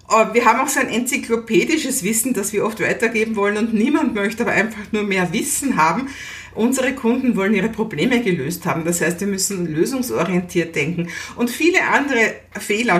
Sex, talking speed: female, 175 wpm